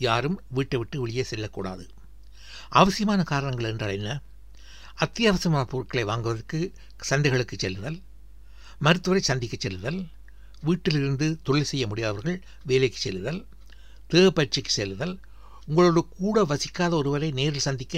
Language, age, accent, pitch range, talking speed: Tamil, 60-79, native, 100-155 Hz, 105 wpm